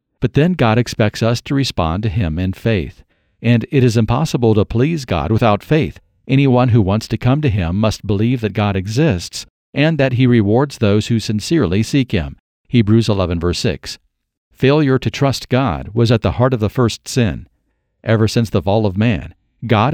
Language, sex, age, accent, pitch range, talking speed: English, male, 50-69, American, 105-130 Hz, 195 wpm